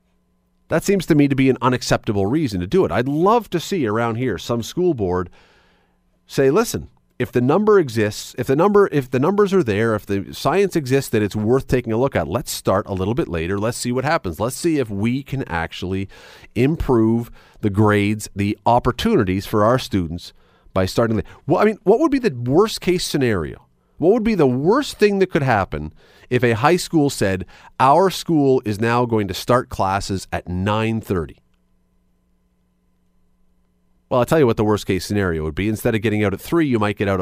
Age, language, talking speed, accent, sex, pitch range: 40-59, English, 205 wpm, American, male, 95-135 Hz